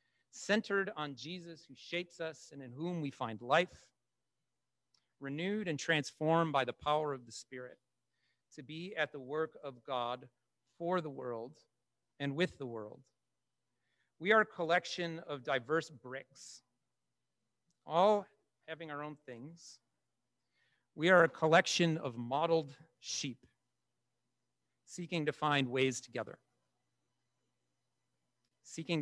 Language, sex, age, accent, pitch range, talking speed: English, male, 40-59, American, 125-160 Hz, 125 wpm